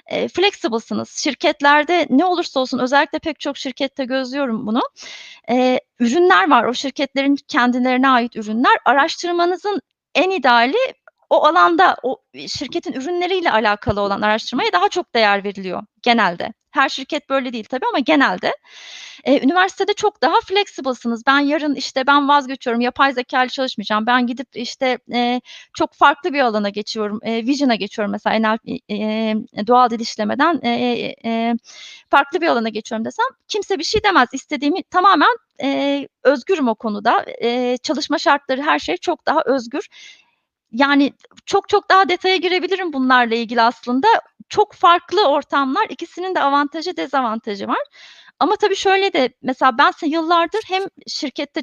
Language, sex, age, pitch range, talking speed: Turkish, female, 30-49, 240-335 Hz, 145 wpm